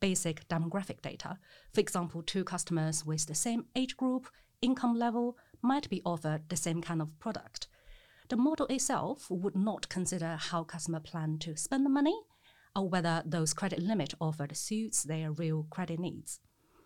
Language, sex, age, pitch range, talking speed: English, female, 40-59, 155-205 Hz, 165 wpm